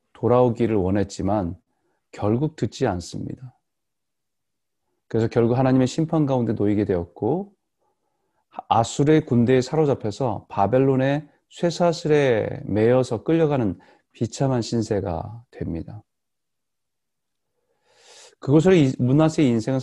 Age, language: 40-59, Korean